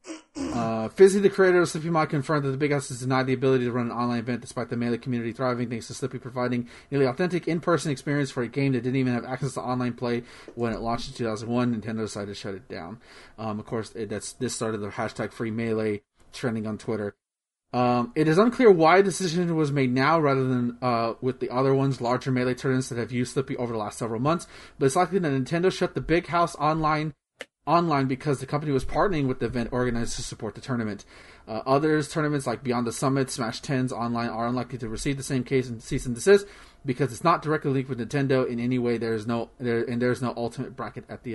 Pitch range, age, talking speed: 120-145 Hz, 30-49, 240 wpm